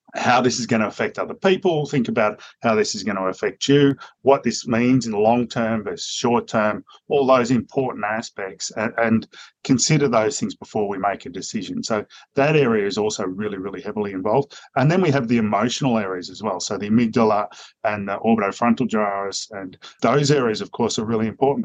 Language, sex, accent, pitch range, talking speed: English, male, Australian, 110-140 Hz, 205 wpm